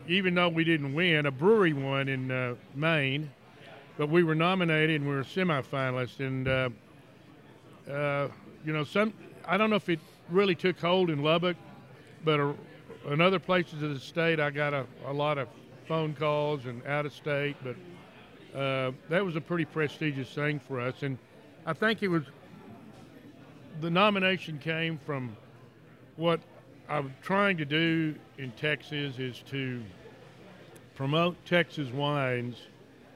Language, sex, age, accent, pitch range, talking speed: English, male, 60-79, American, 135-165 Hz, 160 wpm